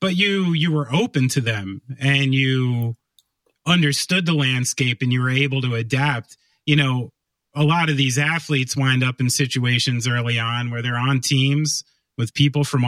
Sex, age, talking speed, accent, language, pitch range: male, 30-49, 175 wpm, American, English, 130-155 Hz